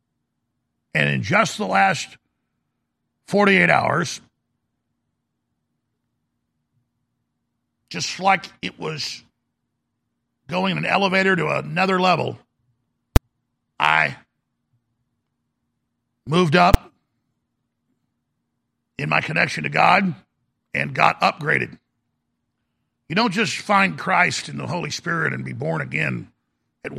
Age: 50-69